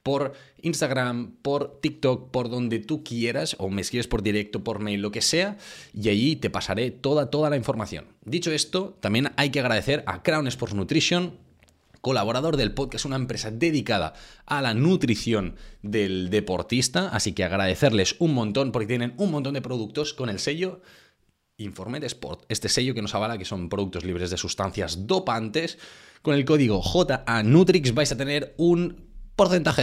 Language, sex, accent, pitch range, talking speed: Spanish, male, Spanish, 105-145 Hz, 170 wpm